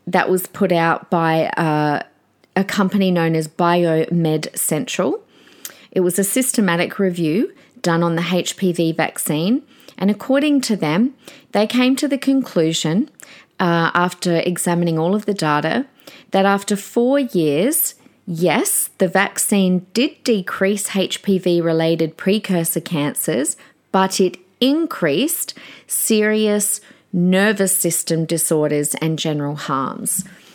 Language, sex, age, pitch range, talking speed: English, female, 40-59, 165-215 Hz, 120 wpm